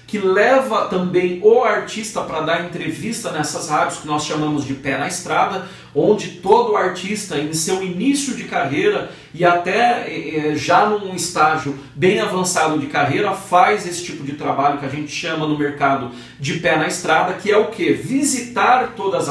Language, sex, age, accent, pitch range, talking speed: Portuguese, male, 40-59, Brazilian, 160-225 Hz, 175 wpm